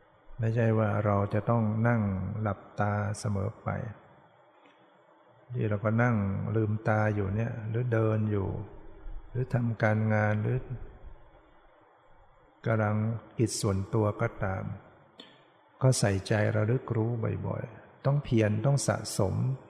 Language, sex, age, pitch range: Thai, male, 60-79, 105-120 Hz